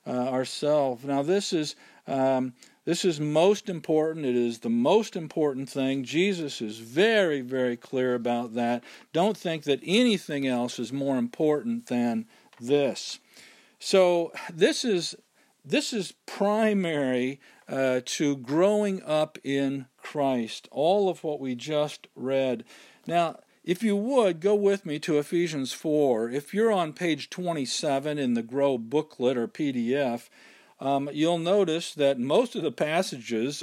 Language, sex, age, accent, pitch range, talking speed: English, male, 50-69, American, 130-170 Hz, 145 wpm